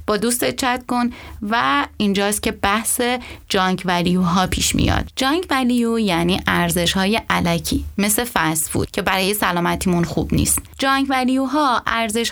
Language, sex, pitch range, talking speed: Persian, female, 185-235 Hz, 145 wpm